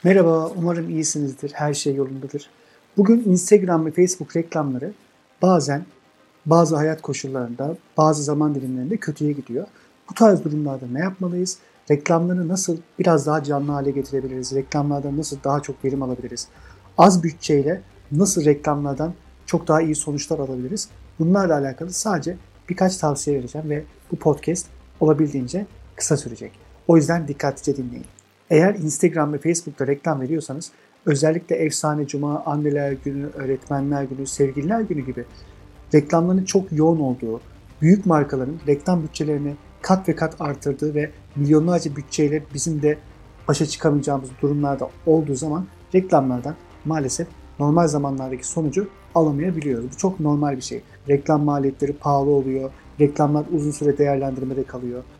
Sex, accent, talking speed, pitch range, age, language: male, native, 130 wpm, 140-165 Hz, 50-69, Turkish